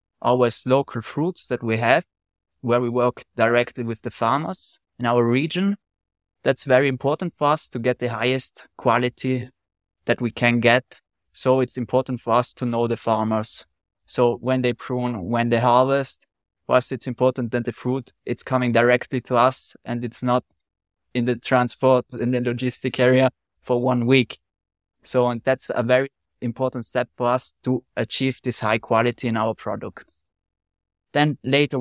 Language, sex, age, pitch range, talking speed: English, male, 20-39, 115-130 Hz, 170 wpm